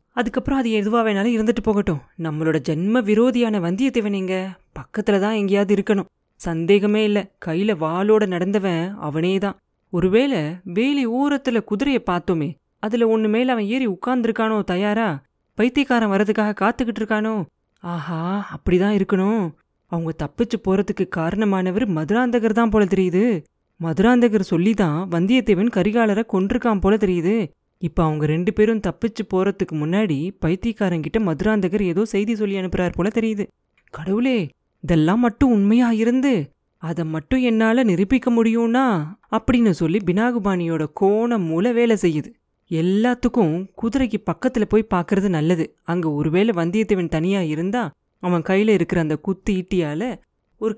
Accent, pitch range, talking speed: native, 175-225 Hz, 120 wpm